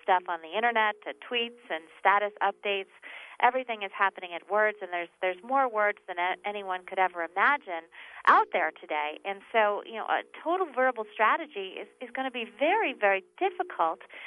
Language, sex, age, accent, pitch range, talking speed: English, female, 40-59, American, 185-255 Hz, 185 wpm